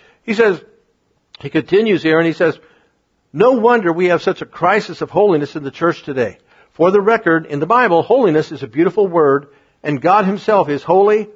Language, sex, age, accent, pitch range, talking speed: English, male, 50-69, American, 155-215 Hz, 195 wpm